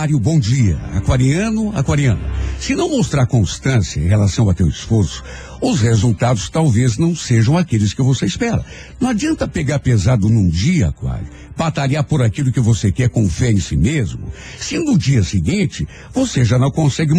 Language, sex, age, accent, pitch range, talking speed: Portuguese, male, 60-79, Brazilian, 110-170 Hz, 170 wpm